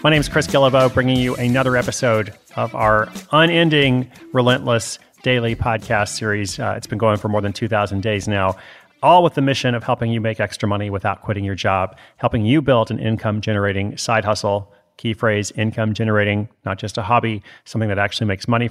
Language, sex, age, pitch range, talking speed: English, male, 30-49, 105-125 Hz, 190 wpm